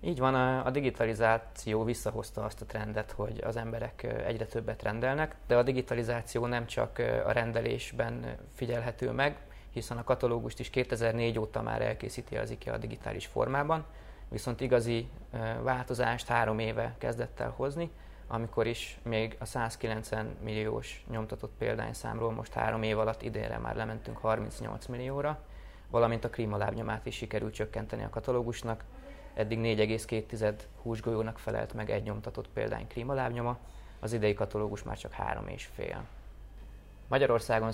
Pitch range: 105-120 Hz